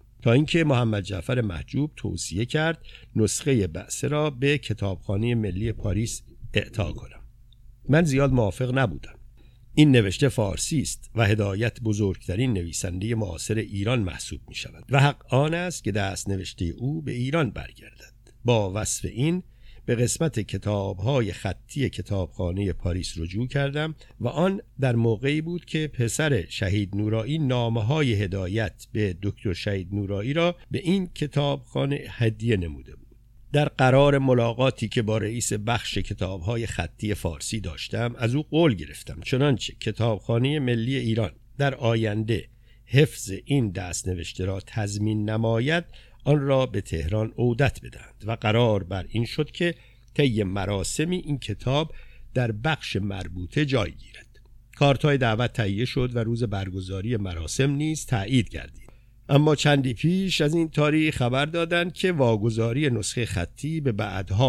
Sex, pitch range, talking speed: male, 105-135 Hz, 140 wpm